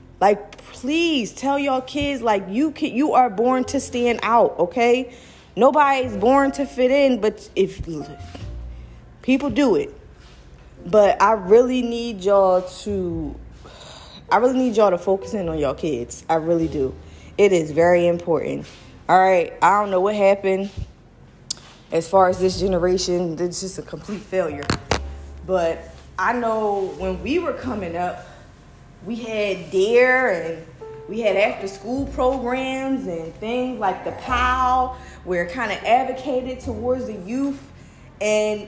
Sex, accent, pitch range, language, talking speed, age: female, American, 185-270 Hz, English, 150 wpm, 20-39